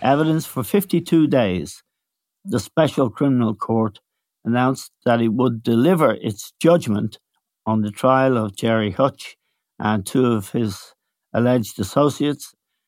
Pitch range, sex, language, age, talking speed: 110-135 Hz, male, English, 60-79, 125 wpm